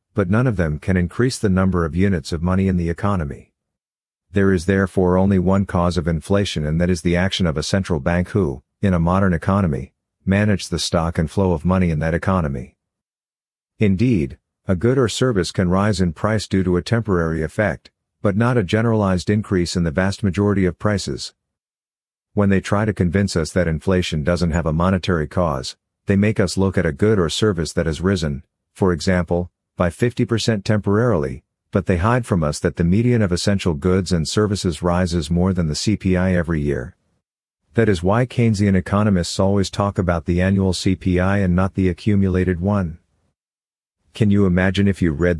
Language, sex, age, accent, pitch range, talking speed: English, male, 50-69, American, 85-100 Hz, 190 wpm